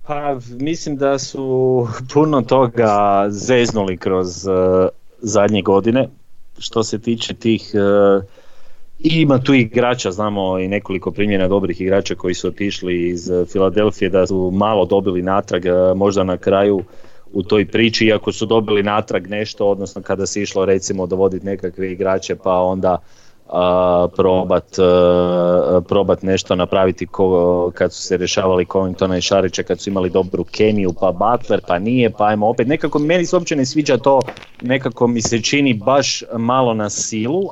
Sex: male